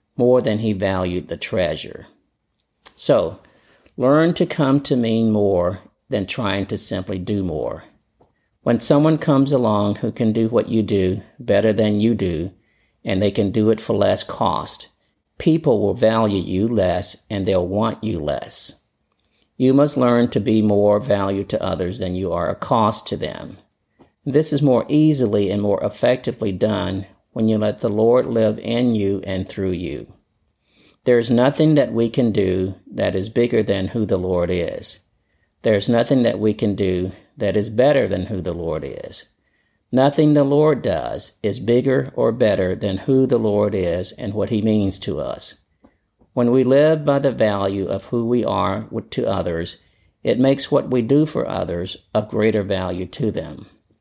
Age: 50-69